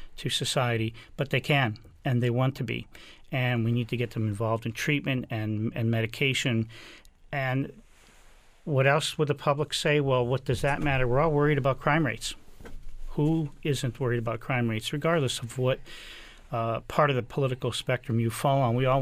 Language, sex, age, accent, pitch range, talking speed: English, male, 40-59, American, 120-145 Hz, 190 wpm